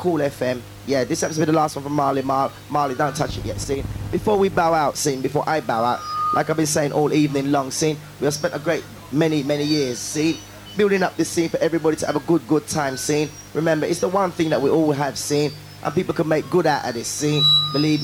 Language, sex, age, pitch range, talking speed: English, male, 20-39, 135-160 Hz, 255 wpm